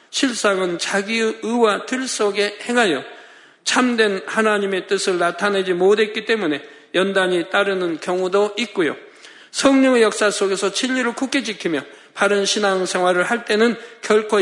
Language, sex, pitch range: Korean, male, 190-230 Hz